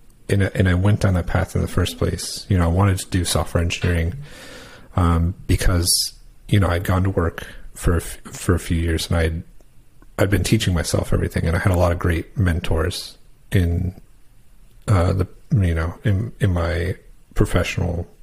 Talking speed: 185 wpm